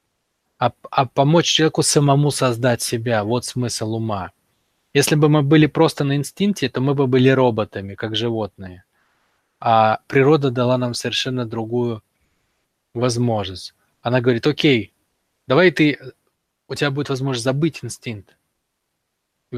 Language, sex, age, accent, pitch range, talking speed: Russian, male, 20-39, native, 115-150 Hz, 130 wpm